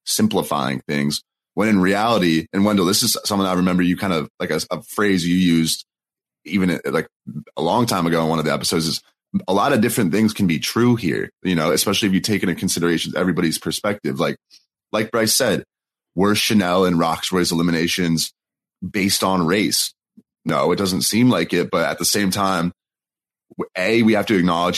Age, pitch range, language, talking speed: 30-49, 85-110 Hz, English, 195 wpm